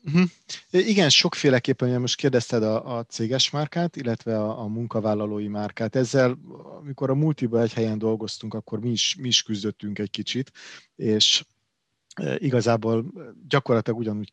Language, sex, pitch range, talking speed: Hungarian, male, 110-135 Hz, 130 wpm